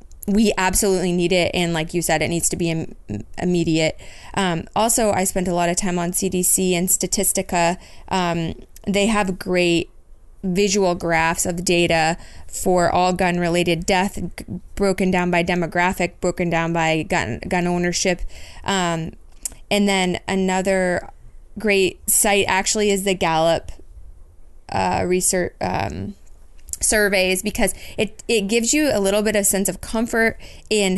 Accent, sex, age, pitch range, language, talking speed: American, female, 20-39, 170-195 Hz, English, 145 wpm